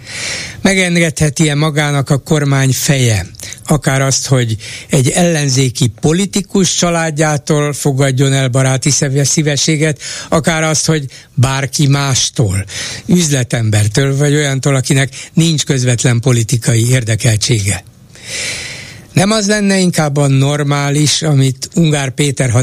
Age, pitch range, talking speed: 60-79, 120-150 Hz, 105 wpm